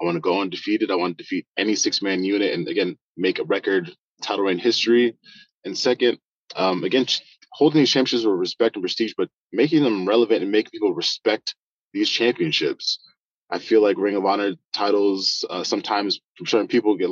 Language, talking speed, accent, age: English, 195 wpm, American, 20-39